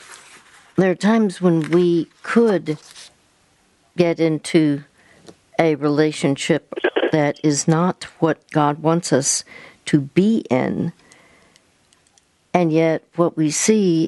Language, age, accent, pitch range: English, 60-79, American, 155-180 Hz